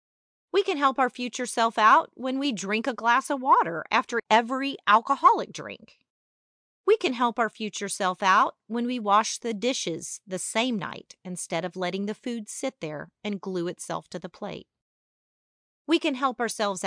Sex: female